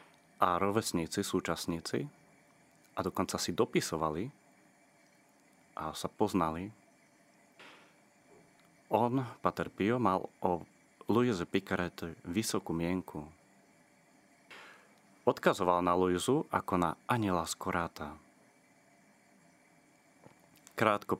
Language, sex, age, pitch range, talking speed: Slovak, male, 30-49, 85-105 Hz, 75 wpm